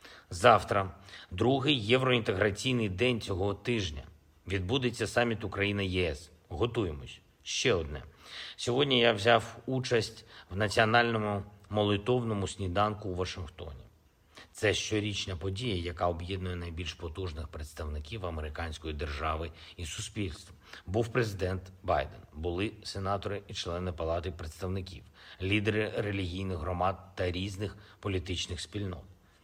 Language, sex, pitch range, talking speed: Ukrainian, male, 90-115 Hz, 100 wpm